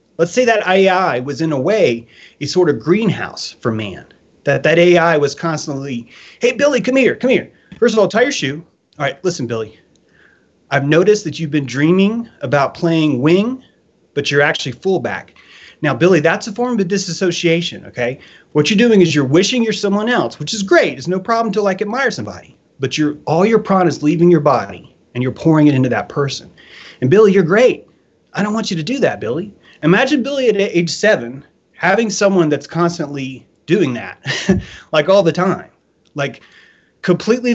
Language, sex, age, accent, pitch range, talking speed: English, male, 30-49, American, 145-200 Hz, 190 wpm